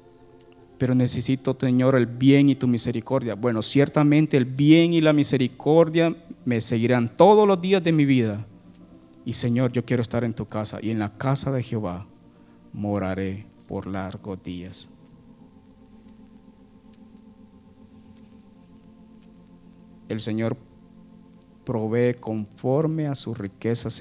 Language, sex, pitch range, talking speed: Spanish, male, 95-140 Hz, 120 wpm